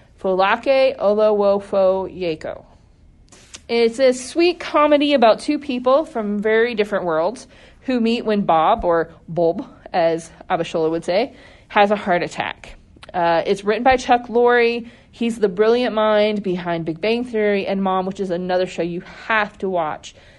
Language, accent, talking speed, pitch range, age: English, American, 145 wpm, 175-225 Hz, 30-49